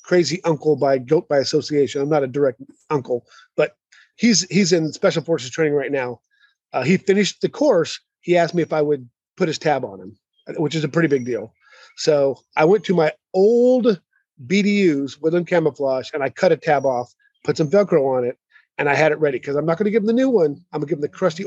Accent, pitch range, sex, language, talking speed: American, 150-195 Hz, male, English, 235 wpm